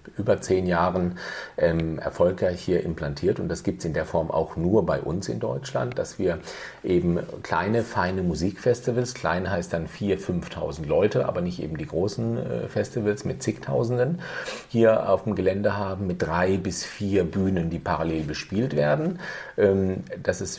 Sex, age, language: male, 40-59, German